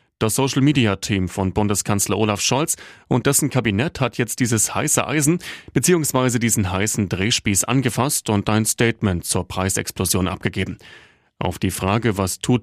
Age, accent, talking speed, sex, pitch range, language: 30-49, German, 145 wpm, male, 100-130 Hz, German